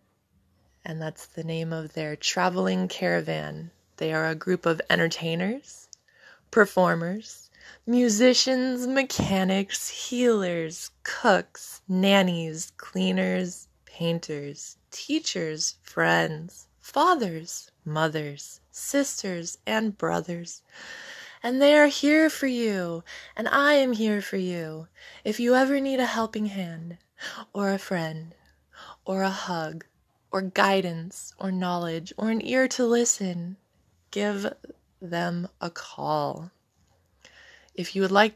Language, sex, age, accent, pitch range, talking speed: English, female, 20-39, American, 165-220 Hz, 110 wpm